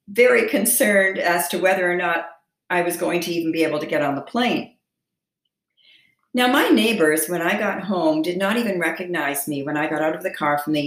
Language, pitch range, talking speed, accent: English, 165-210 Hz, 220 wpm, American